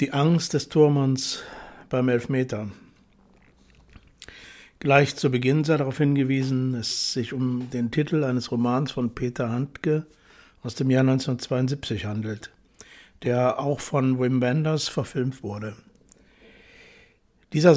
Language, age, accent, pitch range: German, 60-79, German, 125-145 Hz